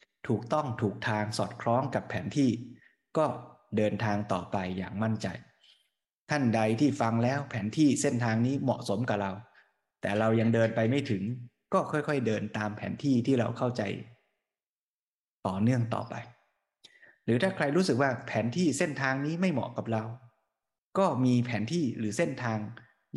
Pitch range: 110-135 Hz